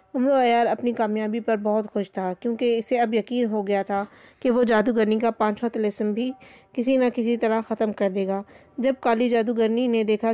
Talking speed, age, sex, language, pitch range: 205 wpm, 20-39, female, Urdu, 215-240 Hz